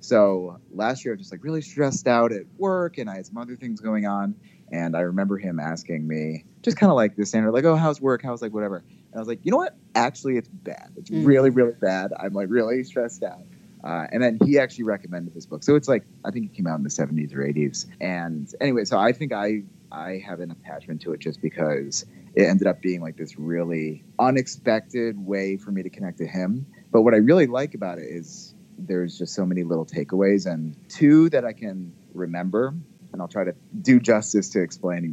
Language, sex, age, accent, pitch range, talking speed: English, male, 30-49, American, 90-130 Hz, 230 wpm